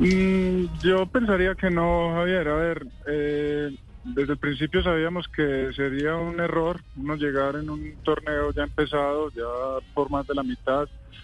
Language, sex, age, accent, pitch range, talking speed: Spanish, male, 20-39, Colombian, 130-155 Hz, 155 wpm